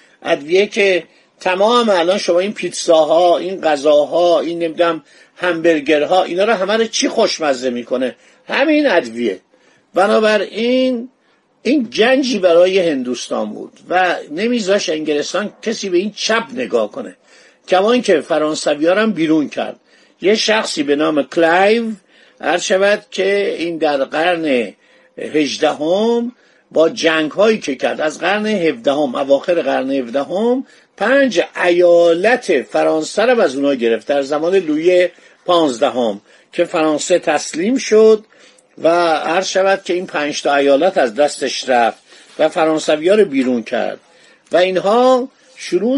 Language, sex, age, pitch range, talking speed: Persian, male, 50-69, 155-215 Hz, 125 wpm